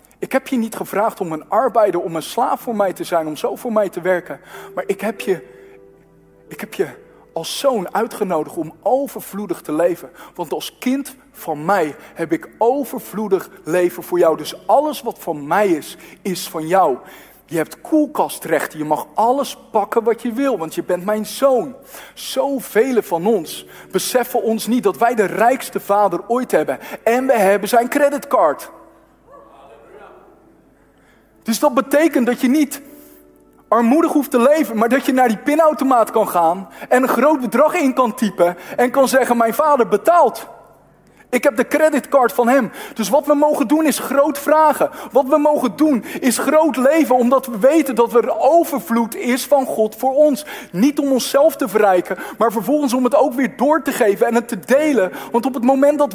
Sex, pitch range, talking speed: male, 205-280 Hz, 185 wpm